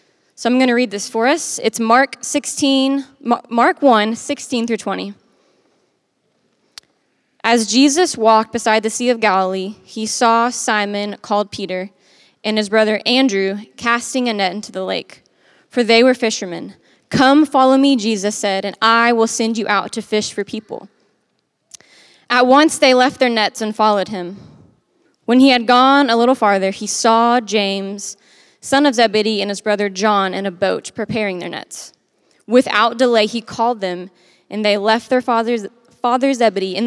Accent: American